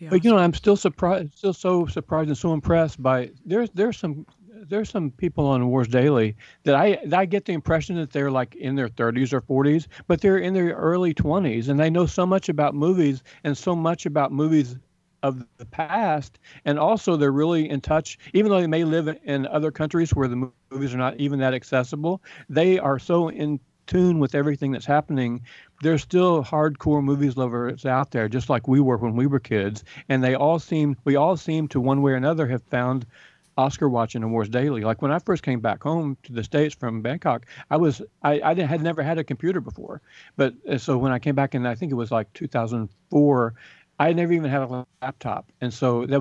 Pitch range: 130-165 Hz